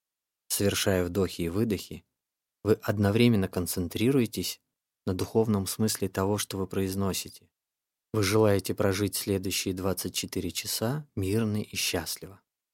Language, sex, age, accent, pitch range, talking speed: Russian, male, 20-39, native, 95-110 Hz, 110 wpm